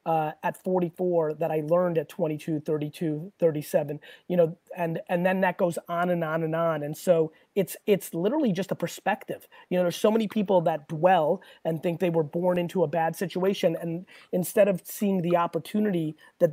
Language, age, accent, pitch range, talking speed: English, 30-49, American, 170-205 Hz, 195 wpm